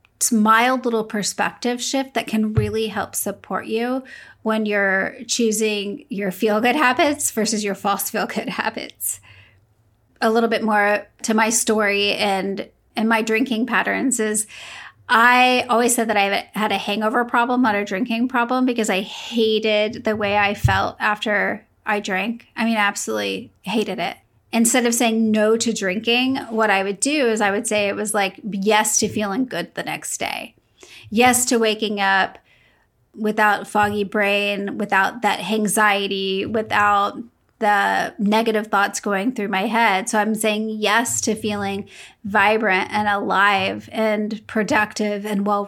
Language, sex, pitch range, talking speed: English, female, 200-230 Hz, 155 wpm